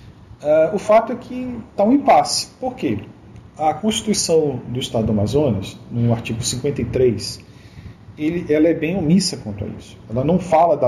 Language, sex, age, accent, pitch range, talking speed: Portuguese, male, 40-59, Brazilian, 120-160 Hz, 160 wpm